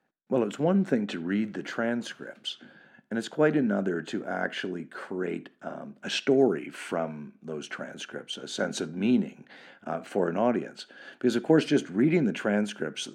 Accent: American